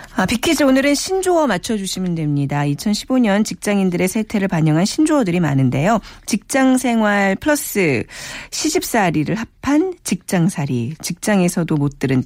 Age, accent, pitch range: 40-59, native, 155-235 Hz